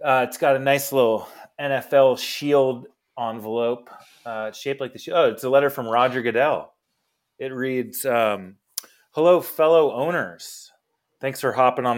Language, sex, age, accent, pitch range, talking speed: English, male, 30-49, American, 110-135 Hz, 155 wpm